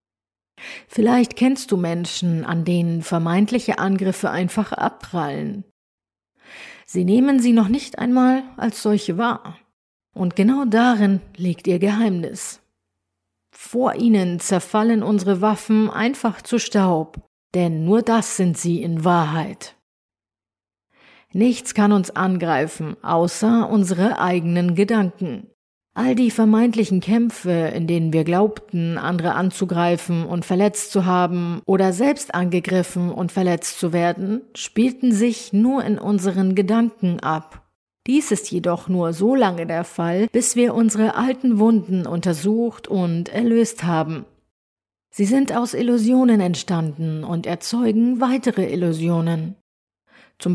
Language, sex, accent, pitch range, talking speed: German, female, German, 175-225 Hz, 120 wpm